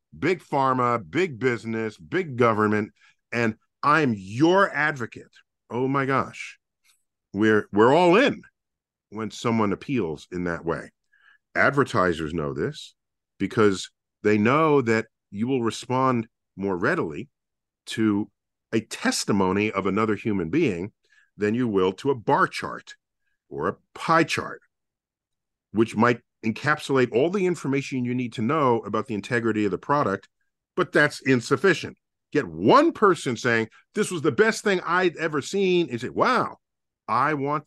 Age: 50-69